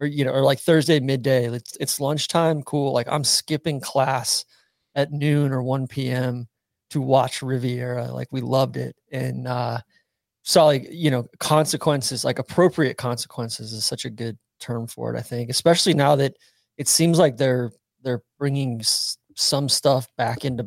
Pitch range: 120-145 Hz